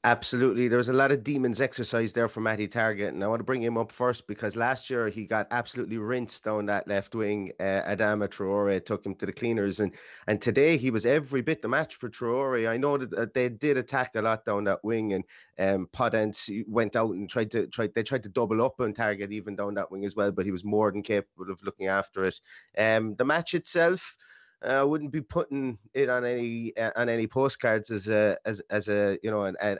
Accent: British